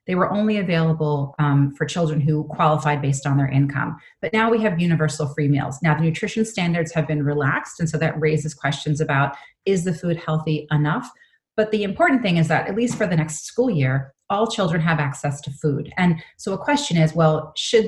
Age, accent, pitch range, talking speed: 30-49, American, 150-180 Hz, 215 wpm